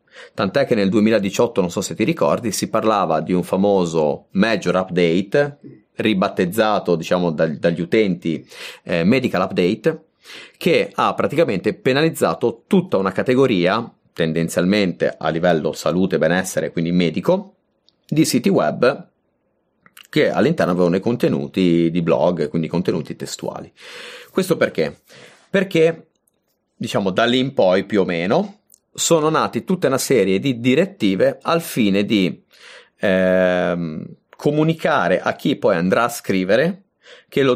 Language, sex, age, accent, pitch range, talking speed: Italian, male, 30-49, native, 90-140 Hz, 130 wpm